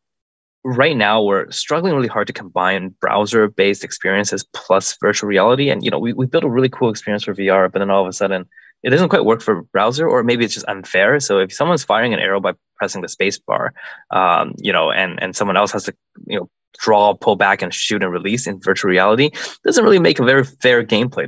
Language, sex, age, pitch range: English, male, 20-39, 95-120 Hz